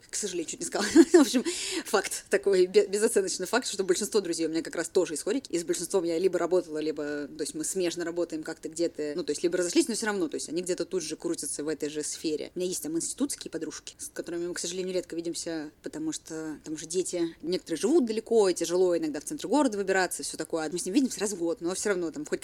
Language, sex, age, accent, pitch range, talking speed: Russian, female, 20-39, native, 165-220 Hz, 255 wpm